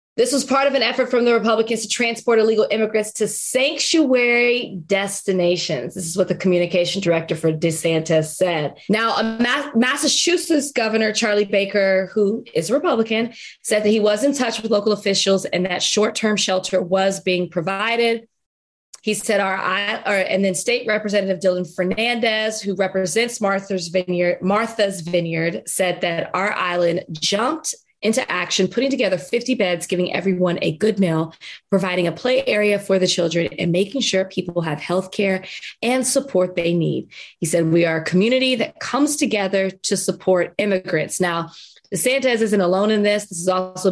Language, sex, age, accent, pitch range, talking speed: English, female, 20-39, American, 180-225 Hz, 165 wpm